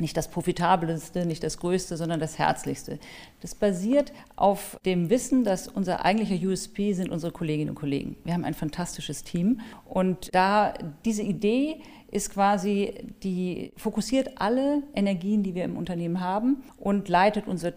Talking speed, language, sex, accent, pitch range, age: 155 wpm, German, female, German, 170-210 Hz, 40-59